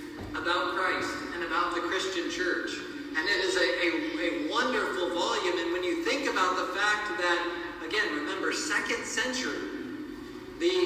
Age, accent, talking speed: 40-59, American, 155 wpm